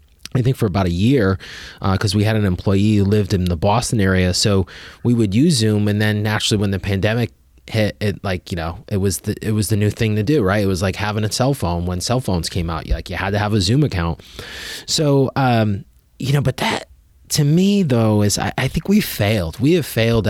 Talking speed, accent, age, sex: 250 wpm, American, 20-39, male